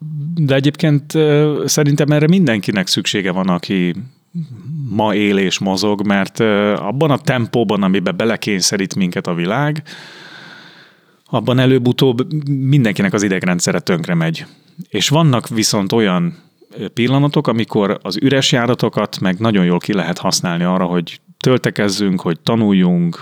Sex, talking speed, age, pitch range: male, 125 wpm, 30-49, 95-155 Hz